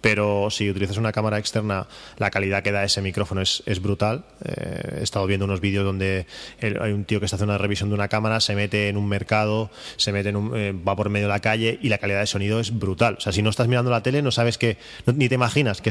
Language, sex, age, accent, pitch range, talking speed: Spanish, male, 20-39, Spanish, 100-115 Hz, 275 wpm